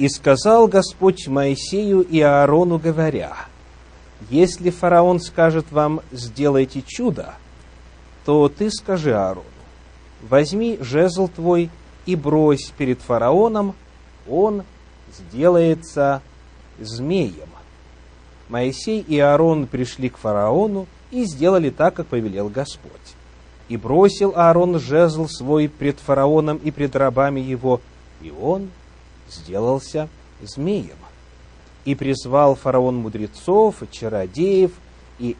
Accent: native